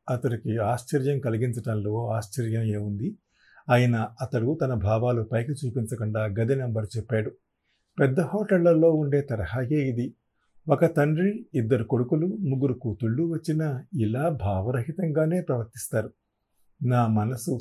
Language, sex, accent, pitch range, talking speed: Telugu, male, native, 110-150 Hz, 105 wpm